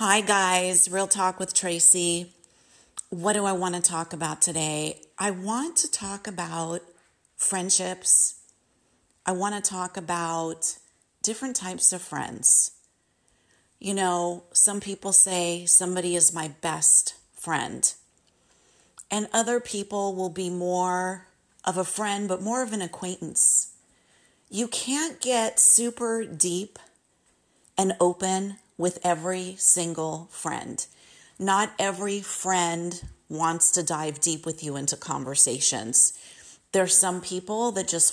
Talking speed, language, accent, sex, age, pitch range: 125 wpm, English, American, female, 40-59, 175-215 Hz